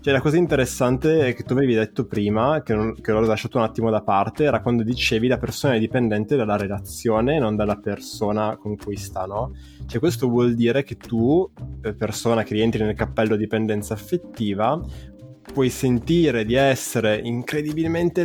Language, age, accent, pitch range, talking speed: Italian, 20-39, native, 110-140 Hz, 180 wpm